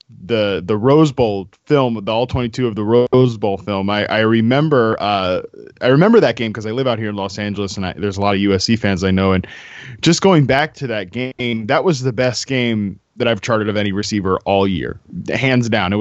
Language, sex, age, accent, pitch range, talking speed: English, male, 20-39, American, 100-120 Hz, 230 wpm